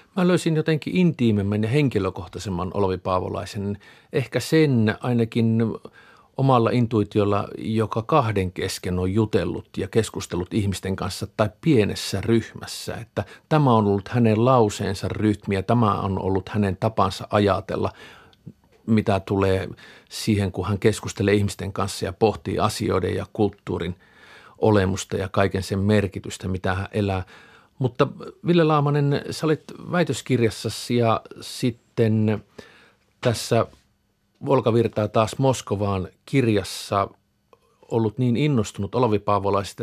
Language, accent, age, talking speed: Finnish, native, 50-69, 115 wpm